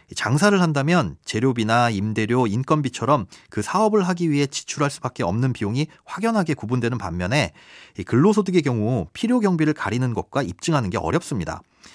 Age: 30-49